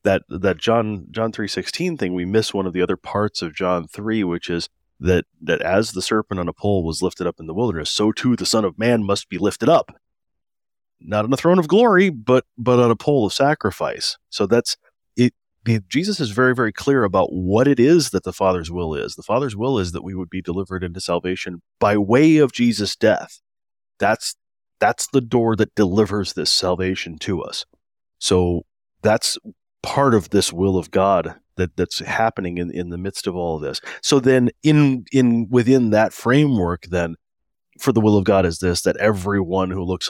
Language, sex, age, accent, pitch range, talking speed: English, male, 30-49, American, 90-115 Hz, 205 wpm